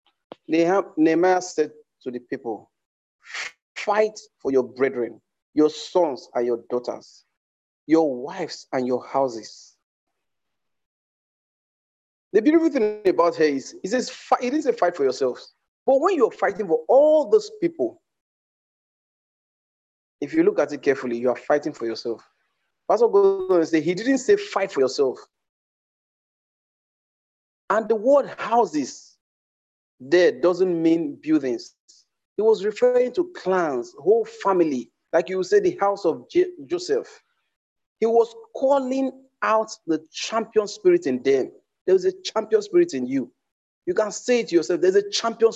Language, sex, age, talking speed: English, male, 40-59, 140 wpm